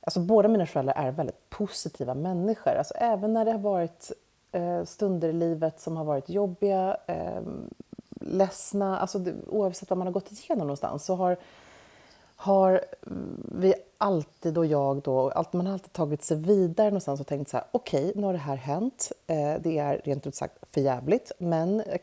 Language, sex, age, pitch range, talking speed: Swedish, female, 30-49, 145-200 Hz, 190 wpm